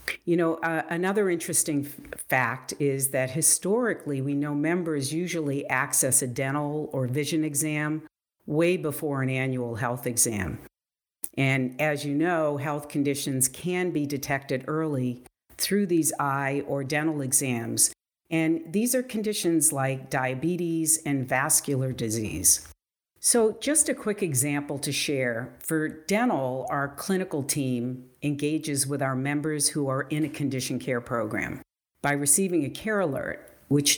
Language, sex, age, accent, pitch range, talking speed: English, female, 50-69, American, 135-160 Hz, 140 wpm